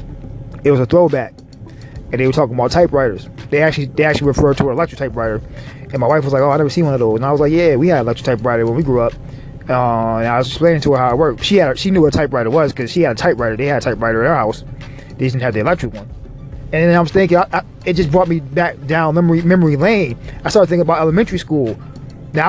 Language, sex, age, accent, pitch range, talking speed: English, male, 20-39, American, 130-175 Hz, 280 wpm